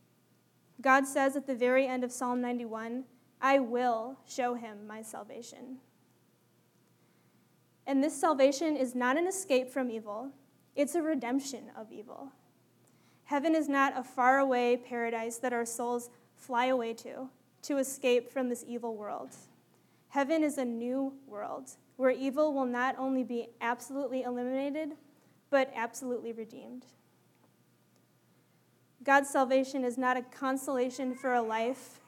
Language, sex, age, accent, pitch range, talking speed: English, female, 20-39, American, 235-270 Hz, 135 wpm